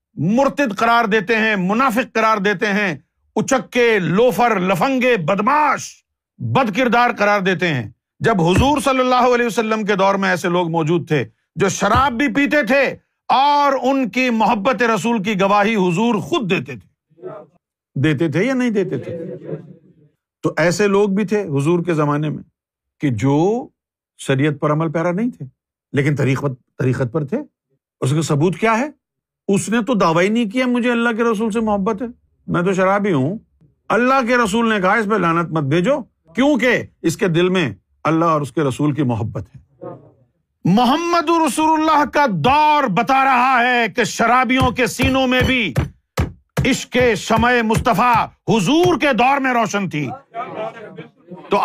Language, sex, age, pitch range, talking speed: Urdu, male, 50-69, 165-245 Hz, 170 wpm